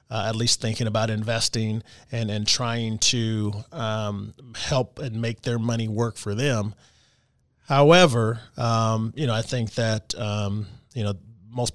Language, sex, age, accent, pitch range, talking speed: English, male, 30-49, American, 110-145 Hz, 155 wpm